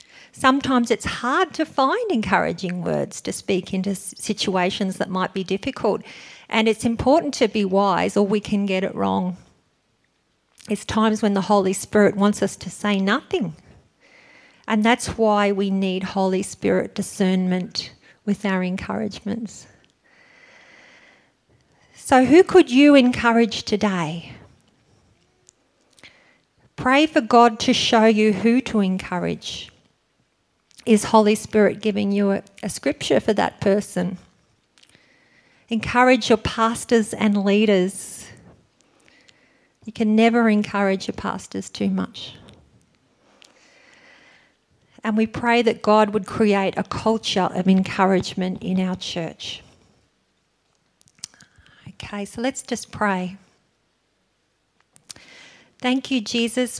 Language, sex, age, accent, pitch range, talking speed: English, female, 50-69, Australian, 195-235 Hz, 115 wpm